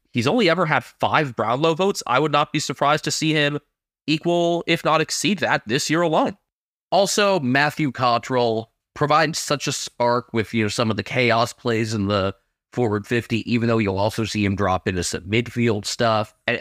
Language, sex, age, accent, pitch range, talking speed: English, male, 20-39, American, 115-165 Hz, 195 wpm